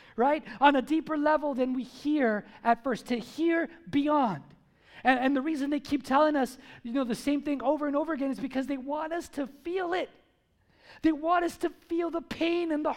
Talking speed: 215 wpm